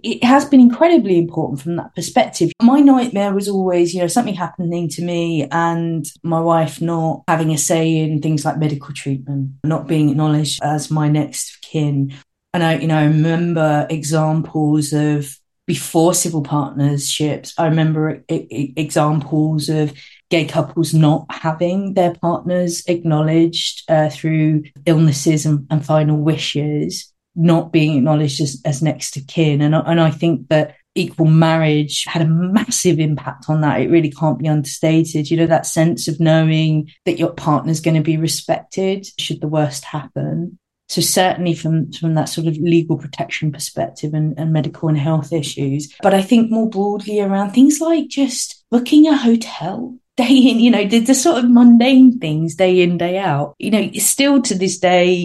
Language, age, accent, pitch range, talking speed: English, 30-49, British, 155-180 Hz, 170 wpm